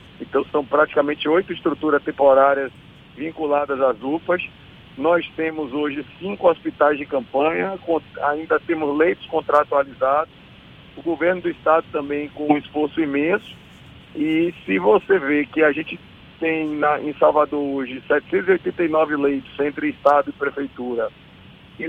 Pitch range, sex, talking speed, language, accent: 145-175 Hz, male, 130 wpm, Portuguese, Brazilian